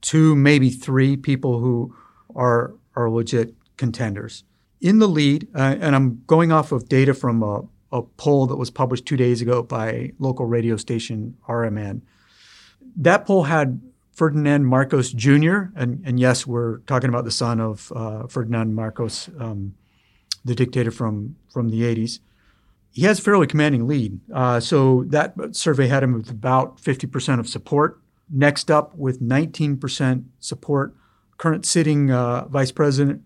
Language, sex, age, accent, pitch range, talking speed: English, male, 50-69, American, 120-145 Hz, 155 wpm